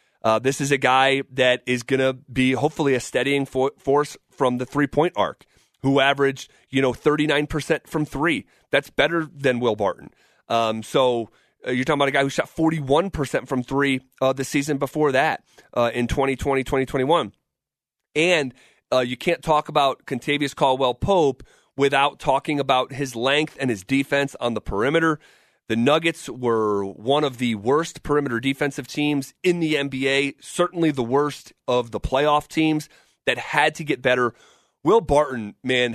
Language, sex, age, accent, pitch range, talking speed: English, male, 30-49, American, 130-155 Hz, 165 wpm